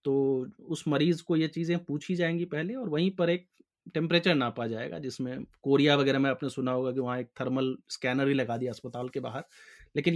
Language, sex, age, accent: Hindi, male, 30-49, native